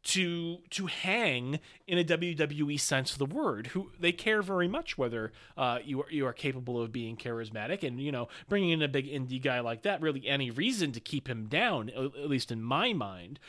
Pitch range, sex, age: 130-175 Hz, male, 30-49